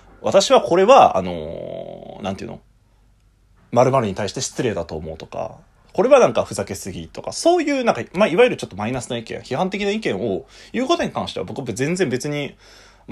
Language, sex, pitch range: Japanese, male, 95-135 Hz